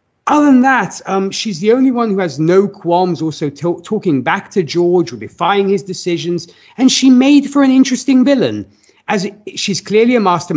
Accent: British